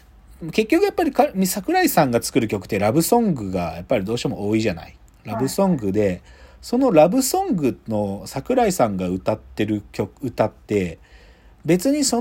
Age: 40-59